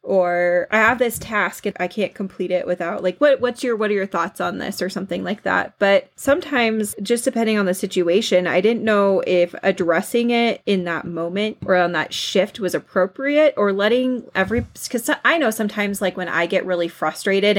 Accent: American